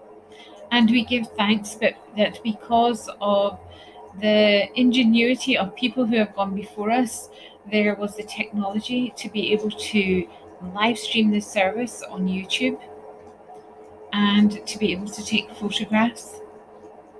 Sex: female